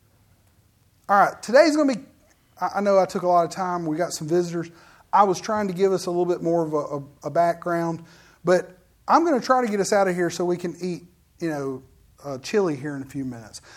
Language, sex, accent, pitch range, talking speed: English, male, American, 180-250 Hz, 240 wpm